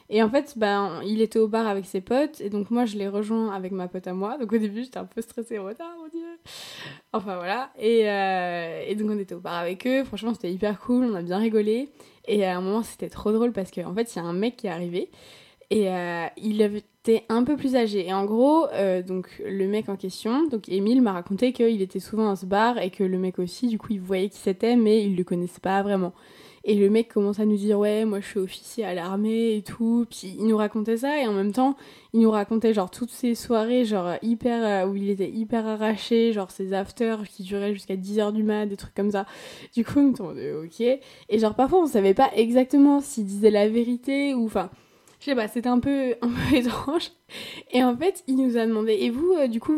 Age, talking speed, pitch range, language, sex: 20-39, 250 wpm, 195-240 Hz, French, female